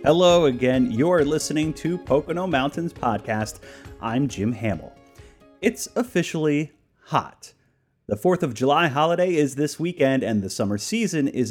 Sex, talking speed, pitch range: male, 140 wpm, 115-160 Hz